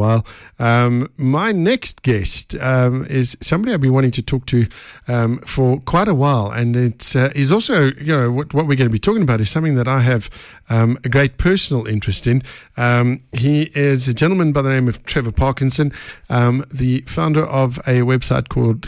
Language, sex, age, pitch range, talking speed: English, male, 50-69, 115-140 Hz, 195 wpm